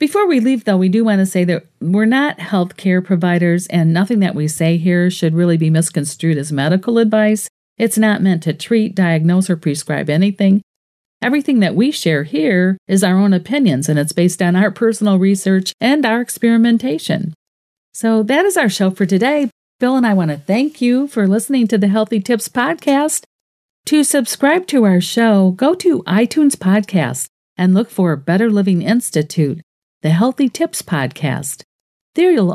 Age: 50-69